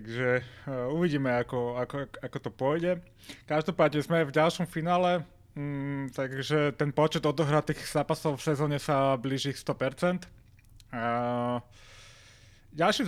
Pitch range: 115-145 Hz